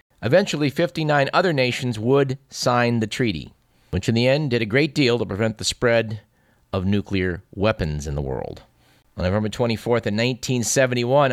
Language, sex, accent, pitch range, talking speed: English, male, American, 105-145 Hz, 165 wpm